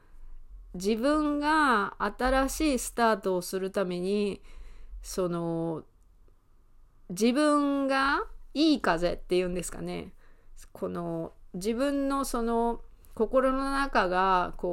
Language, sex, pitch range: Japanese, female, 185-265 Hz